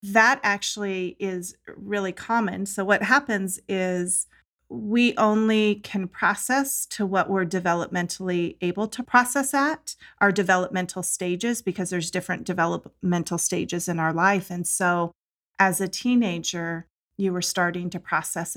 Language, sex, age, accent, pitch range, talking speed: English, female, 40-59, American, 180-220 Hz, 135 wpm